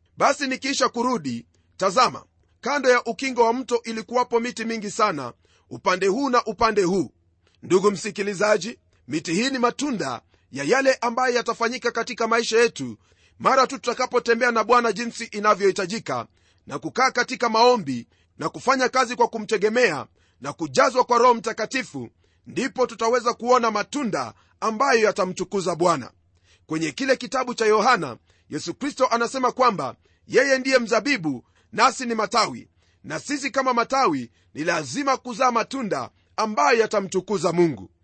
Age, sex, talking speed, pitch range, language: 40-59, male, 135 wpm, 175-250 Hz, Swahili